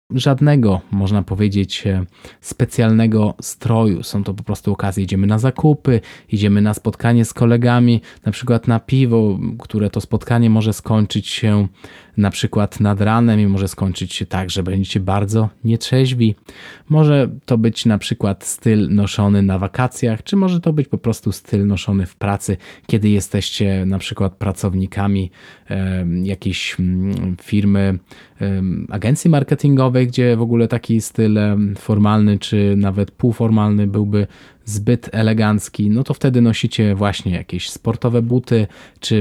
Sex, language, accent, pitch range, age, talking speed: male, Polish, native, 100-115 Hz, 20-39, 140 wpm